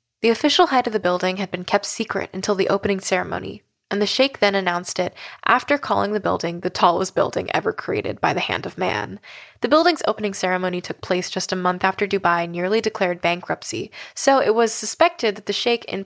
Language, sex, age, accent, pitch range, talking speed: English, female, 10-29, American, 185-225 Hz, 210 wpm